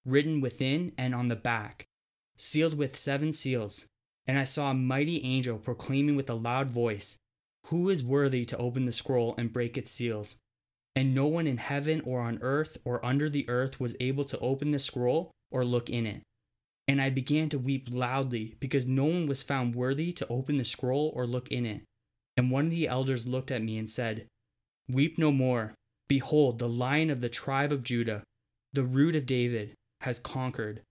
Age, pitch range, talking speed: 20-39, 120-140 Hz, 195 wpm